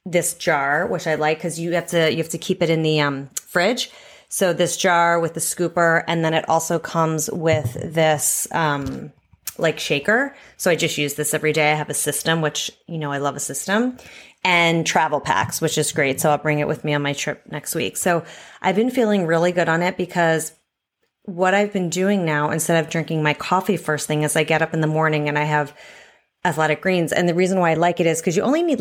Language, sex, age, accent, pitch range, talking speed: English, female, 30-49, American, 155-185 Hz, 235 wpm